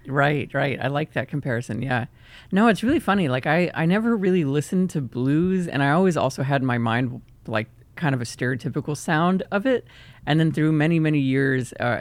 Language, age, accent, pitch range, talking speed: English, 30-49, American, 125-155 Hz, 210 wpm